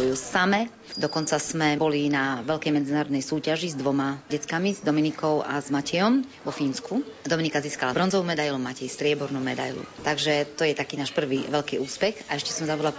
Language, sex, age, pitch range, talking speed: Slovak, female, 30-49, 140-160 Hz, 170 wpm